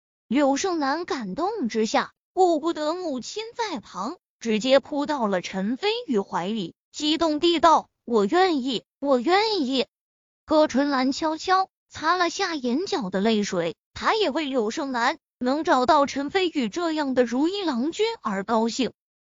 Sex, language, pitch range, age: female, Chinese, 235-345 Hz, 20-39